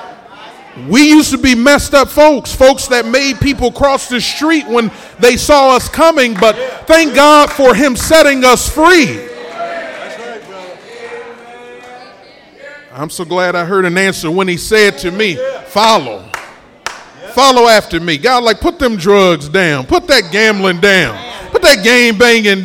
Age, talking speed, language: 40-59, 150 wpm, English